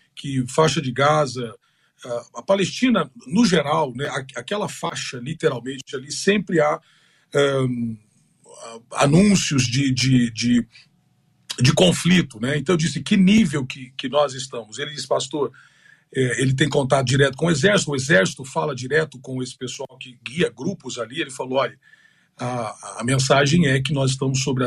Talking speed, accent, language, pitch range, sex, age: 150 wpm, Brazilian, Portuguese, 130-165 Hz, male, 40-59